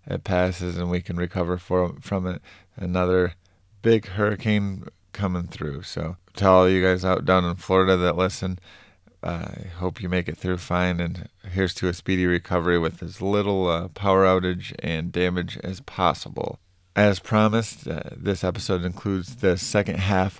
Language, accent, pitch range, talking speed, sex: English, American, 90-100 Hz, 170 wpm, male